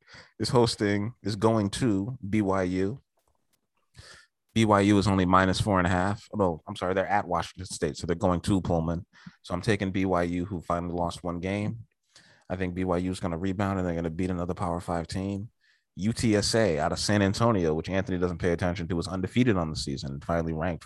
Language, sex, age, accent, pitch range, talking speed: English, male, 30-49, American, 90-105 Hz, 200 wpm